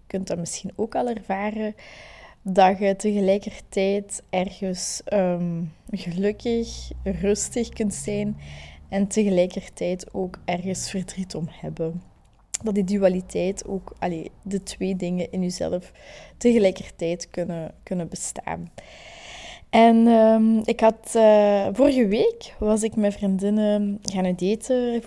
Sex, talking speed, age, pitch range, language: female, 120 wpm, 20-39, 180-210 Hz, Dutch